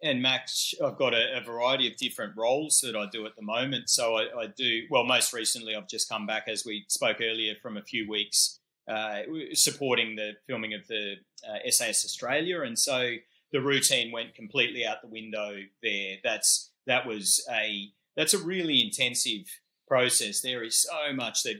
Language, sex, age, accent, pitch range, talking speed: English, male, 30-49, Australian, 105-125 Hz, 190 wpm